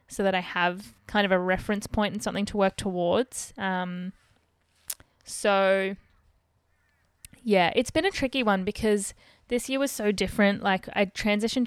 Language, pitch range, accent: English, 180-205 Hz, Australian